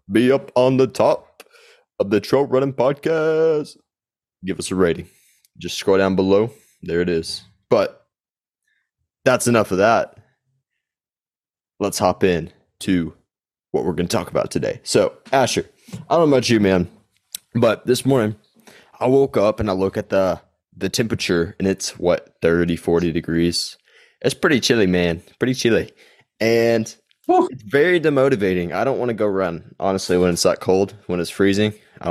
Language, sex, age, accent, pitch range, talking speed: English, male, 20-39, American, 90-125 Hz, 165 wpm